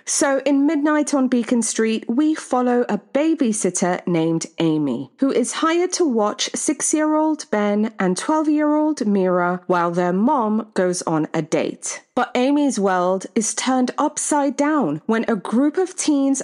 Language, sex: English, female